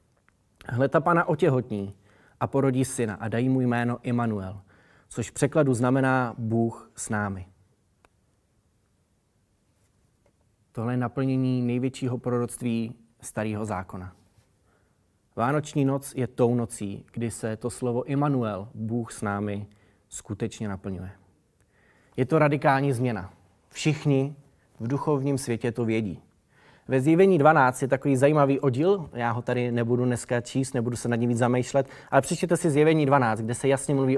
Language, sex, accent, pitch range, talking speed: Czech, male, native, 110-135 Hz, 135 wpm